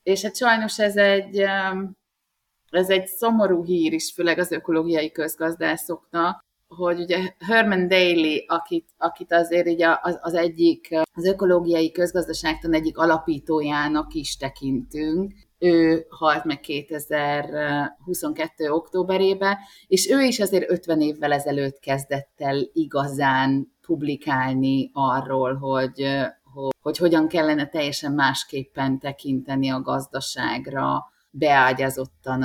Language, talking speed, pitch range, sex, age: Hungarian, 105 wpm, 140-180 Hz, female, 30-49